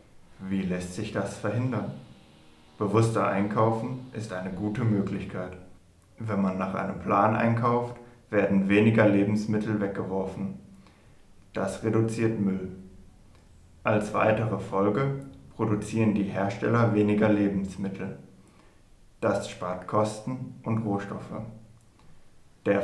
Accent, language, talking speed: German, German, 100 wpm